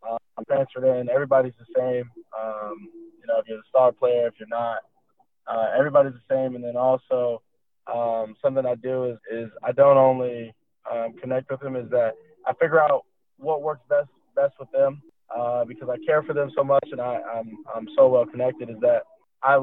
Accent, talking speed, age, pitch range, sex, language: American, 205 wpm, 20-39, 115-135 Hz, male, English